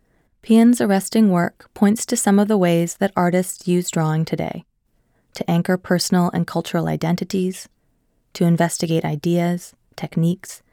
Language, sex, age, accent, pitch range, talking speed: English, female, 20-39, American, 170-195 Hz, 135 wpm